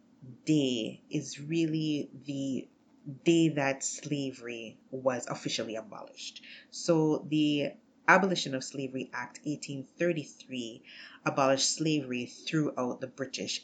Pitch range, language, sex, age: 130-170 Hz, English, female, 30-49